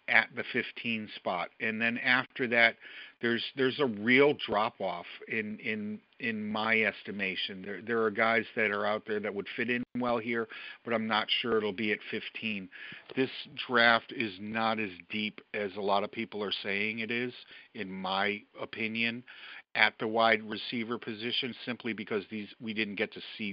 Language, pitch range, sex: English, 105-115 Hz, male